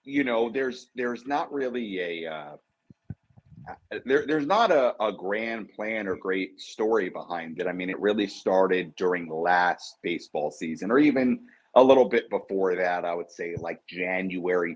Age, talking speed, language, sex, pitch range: 30-49, 170 wpm, English, male, 85-110 Hz